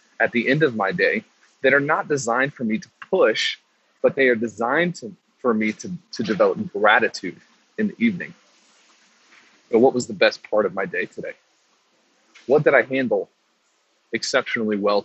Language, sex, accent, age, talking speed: English, male, American, 30-49, 175 wpm